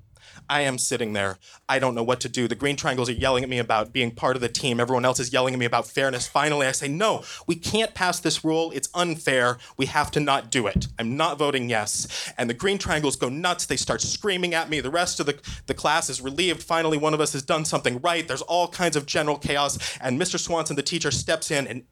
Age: 30-49